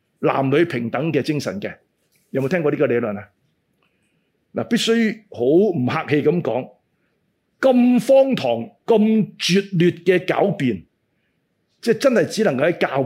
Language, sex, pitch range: Chinese, male, 150-210 Hz